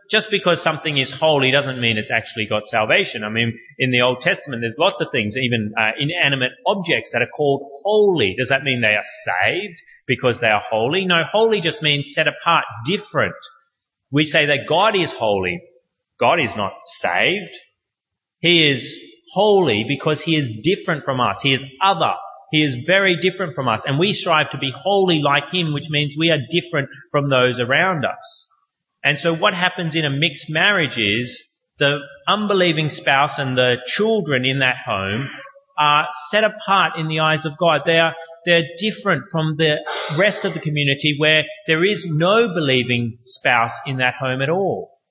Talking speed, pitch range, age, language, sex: 180 wpm, 135-180 Hz, 30-49, English, male